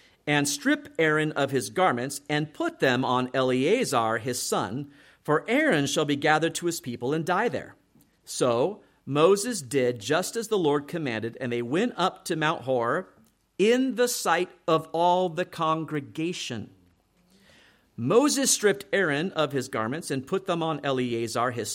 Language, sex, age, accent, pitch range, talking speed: English, male, 50-69, American, 125-175 Hz, 160 wpm